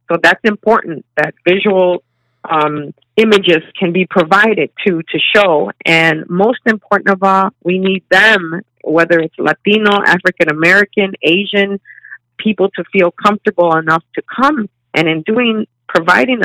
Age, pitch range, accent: 50-69, 160-205 Hz, American